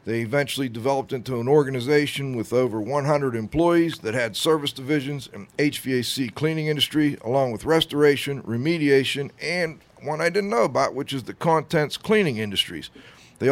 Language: English